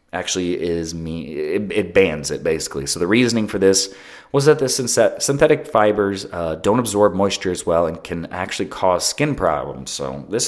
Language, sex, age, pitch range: English, male, 30-49, 90-125 Hz